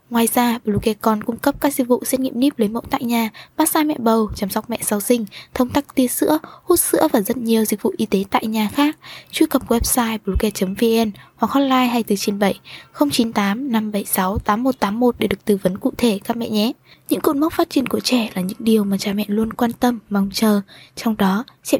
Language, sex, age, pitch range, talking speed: Vietnamese, female, 10-29, 215-255 Hz, 230 wpm